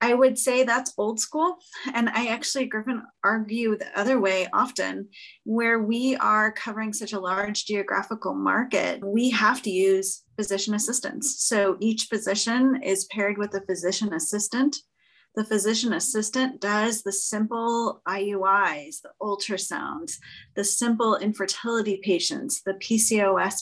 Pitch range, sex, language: 200-255 Hz, female, English